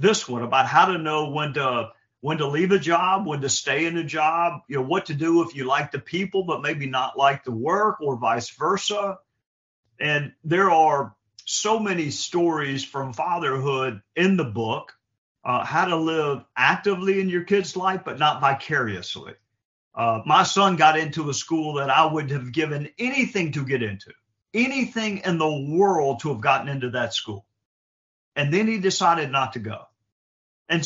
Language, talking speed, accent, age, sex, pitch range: English, 185 wpm, American, 50-69, male, 135-185 Hz